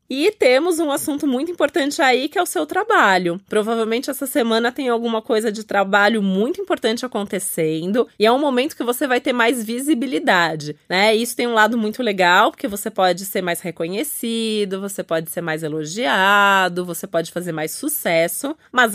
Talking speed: 180 wpm